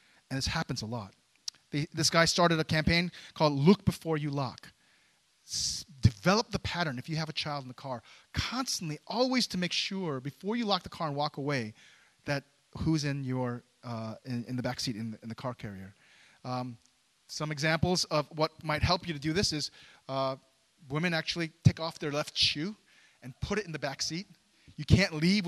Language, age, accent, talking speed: English, 30-49, American, 205 wpm